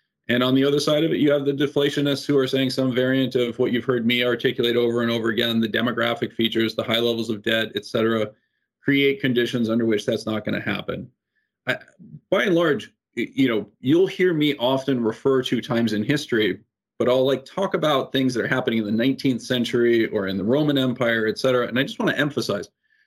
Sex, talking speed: male, 230 wpm